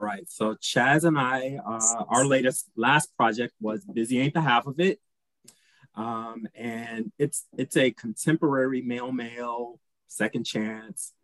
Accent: American